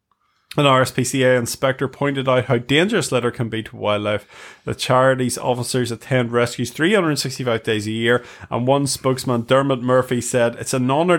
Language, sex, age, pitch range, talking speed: English, male, 30-49, 115-135 Hz, 160 wpm